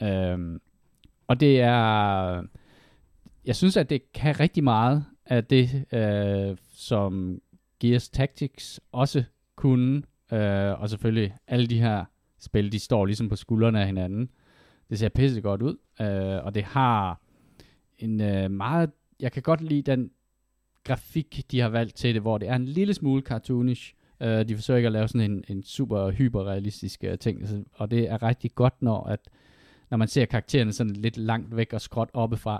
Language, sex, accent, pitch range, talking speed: Danish, male, native, 100-125 Hz, 160 wpm